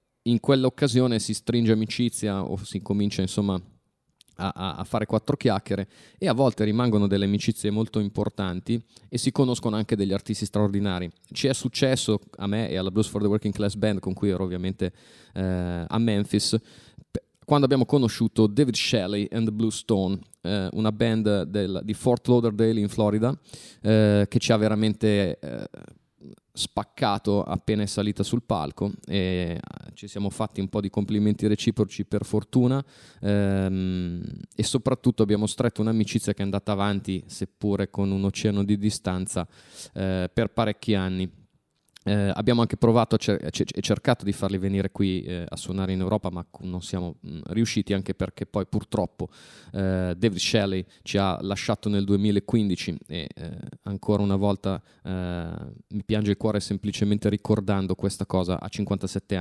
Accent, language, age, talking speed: native, Italian, 30-49, 160 wpm